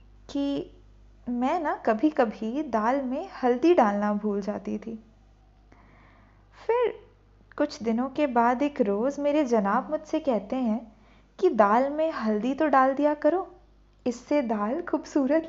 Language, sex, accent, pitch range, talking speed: English, female, Indian, 220-295 Hz, 130 wpm